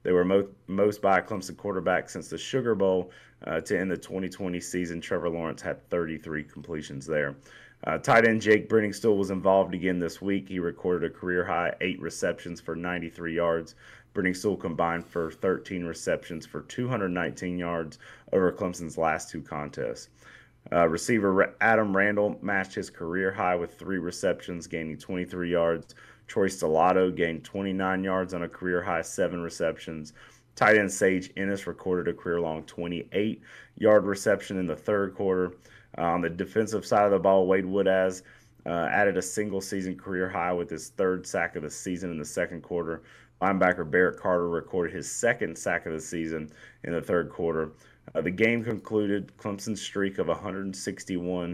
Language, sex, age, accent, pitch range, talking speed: English, male, 30-49, American, 85-100 Hz, 165 wpm